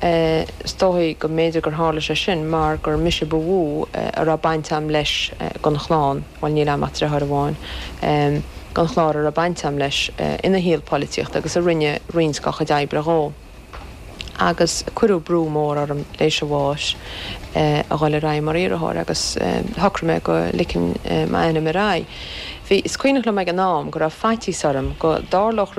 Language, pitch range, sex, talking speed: English, 140-165 Hz, female, 115 wpm